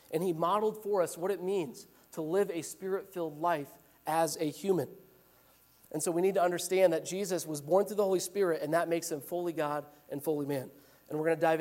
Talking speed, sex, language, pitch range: 225 wpm, male, English, 150-200 Hz